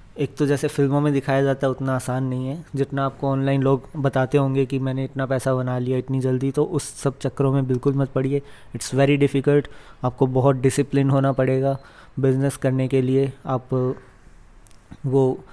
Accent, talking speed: native, 185 wpm